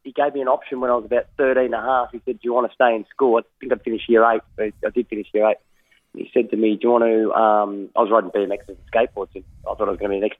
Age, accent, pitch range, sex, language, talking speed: 20-39, Australian, 105-125 Hz, male, English, 335 wpm